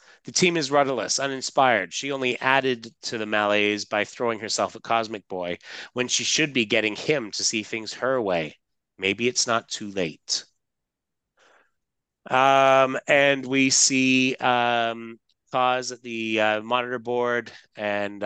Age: 30-49